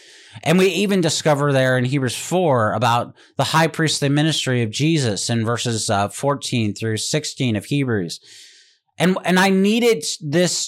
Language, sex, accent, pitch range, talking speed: English, male, American, 115-160 Hz, 155 wpm